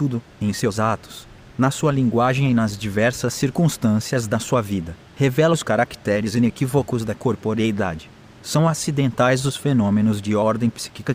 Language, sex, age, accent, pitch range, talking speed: Portuguese, male, 30-49, Brazilian, 105-125 Hz, 140 wpm